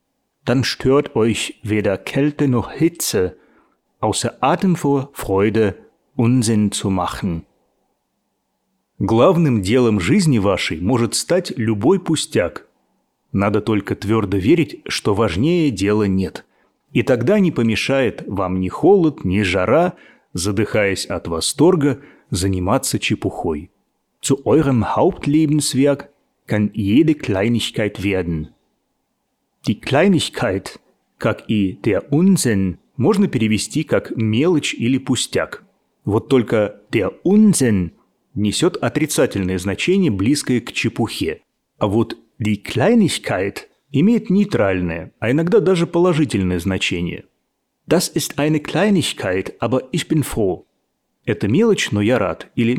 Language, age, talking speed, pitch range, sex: Russian, 30-49, 110 wpm, 100-150 Hz, male